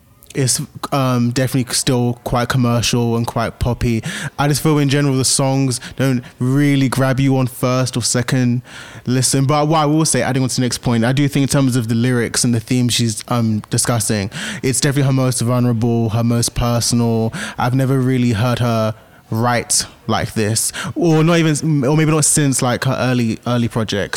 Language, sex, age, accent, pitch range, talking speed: English, male, 20-39, British, 115-135 Hz, 195 wpm